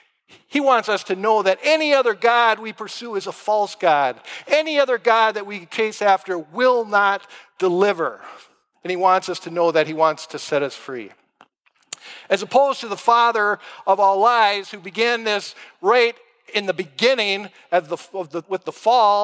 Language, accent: English, American